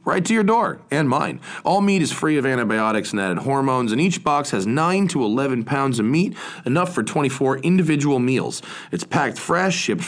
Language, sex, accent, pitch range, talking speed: English, male, American, 125-185 Hz, 200 wpm